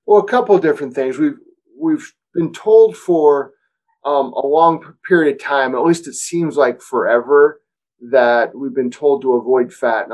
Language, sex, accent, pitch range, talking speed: English, male, American, 135-215 Hz, 185 wpm